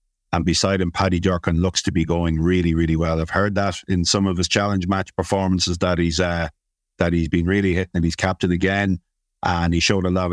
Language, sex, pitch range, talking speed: English, male, 90-105 Hz, 225 wpm